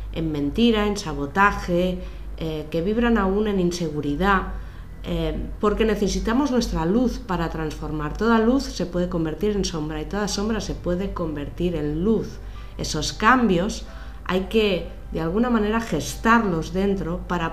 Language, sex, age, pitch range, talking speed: Spanish, female, 30-49, 155-215 Hz, 145 wpm